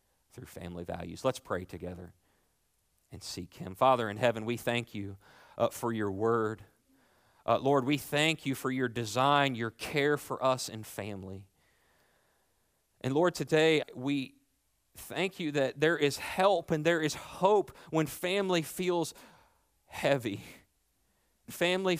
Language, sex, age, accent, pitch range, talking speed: English, male, 40-59, American, 90-145 Hz, 140 wpm